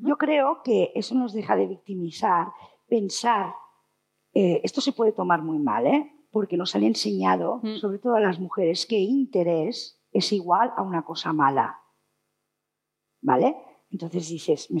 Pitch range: 165-235 Hz